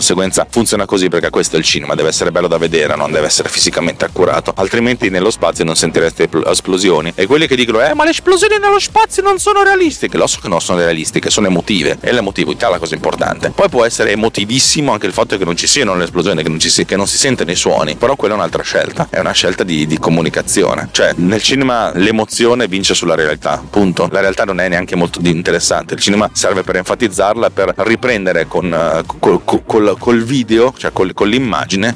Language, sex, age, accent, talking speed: Italian, male, 30-49, native, 220 wpm